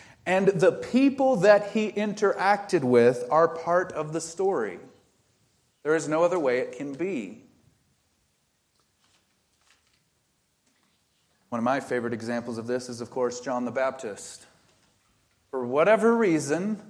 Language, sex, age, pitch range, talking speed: English, male, 30-49, 125-170 Hz, 130 wpm